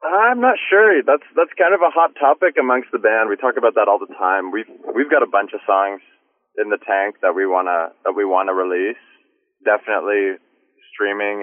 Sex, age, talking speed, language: male, 20-39, 215 wpm, English